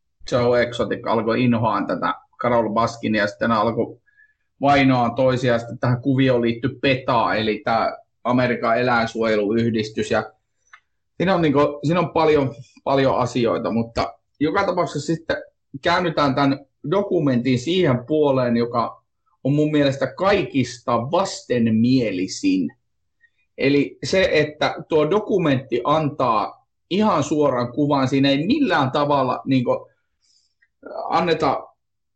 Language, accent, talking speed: Finnish, native, 110 wpm